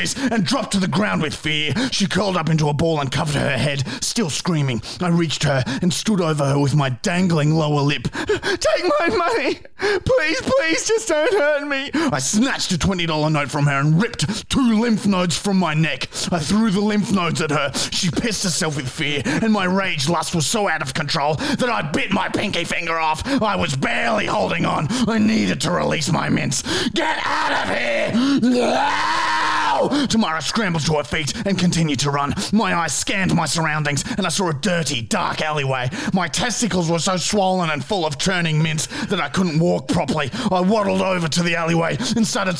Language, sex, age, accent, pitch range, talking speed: English, male, 30-49, Australian, 160-215 Hz, 200 wpm